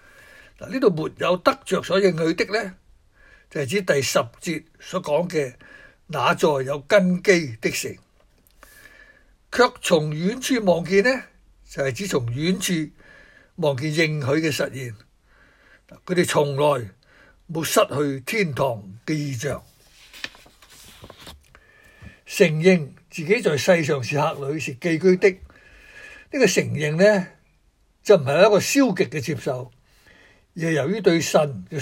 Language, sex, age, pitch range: Chinese, male, 60-79, 140-195 Hz